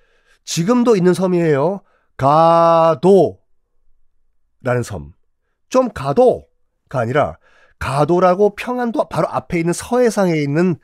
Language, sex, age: Korean, male, 40-59